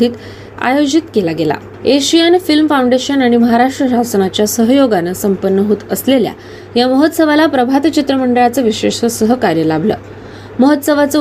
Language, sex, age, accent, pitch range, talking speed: Marathi, female, 20-39, native, 195-265 Hz, 95 wpm